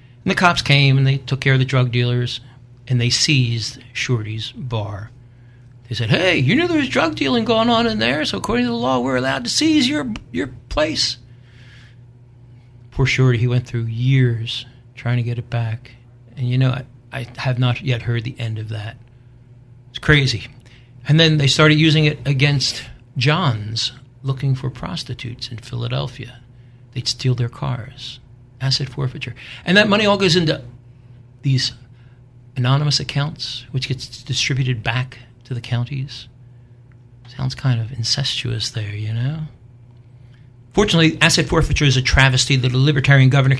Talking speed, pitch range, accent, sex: 165 wpm, 120-140 Hz, American, male